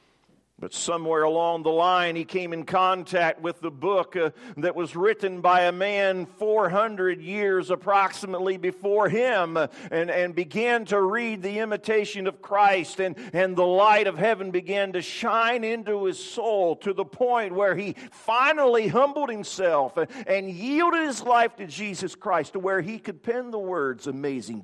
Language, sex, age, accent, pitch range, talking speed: English, male, 50-69, American, 170-210 Hz, 170 wpm